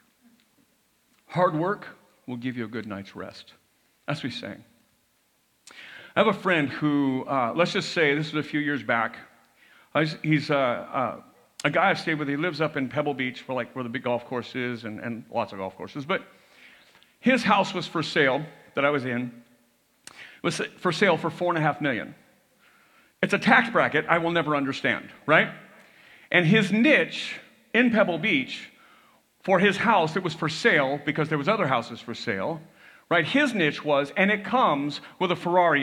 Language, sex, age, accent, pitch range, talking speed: English, male, 50-69, American, 140-205 Hz, 195 wpm